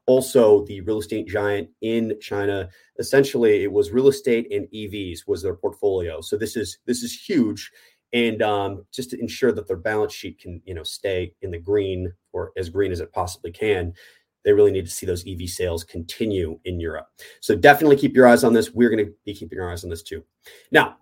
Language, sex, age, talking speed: English, male, 30-49, 215 wpm